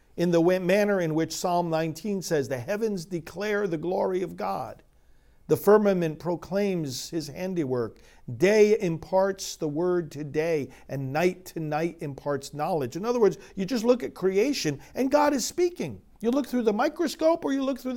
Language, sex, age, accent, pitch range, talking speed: English, male, 50-69, American, 150-235 Hz, 175 wpm